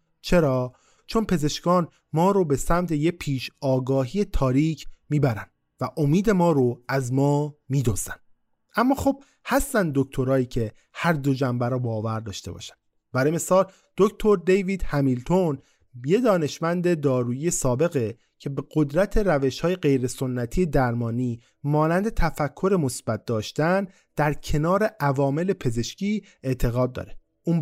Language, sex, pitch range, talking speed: Persian, male, 125-185 Hz, 125 wpm